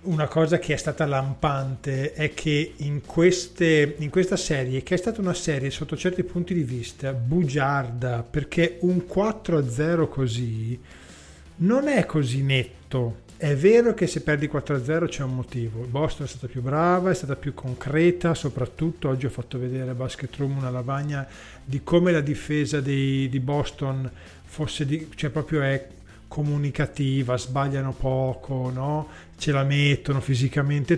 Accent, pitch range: native, 135-165 Hz